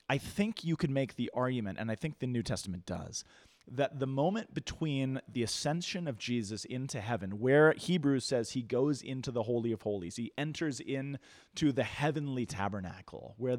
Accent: American